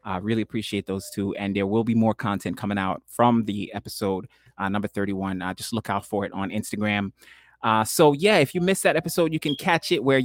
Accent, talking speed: American, 240 wpm